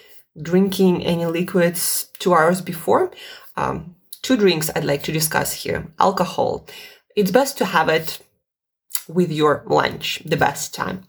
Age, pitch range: 20-39, 155-225 Hz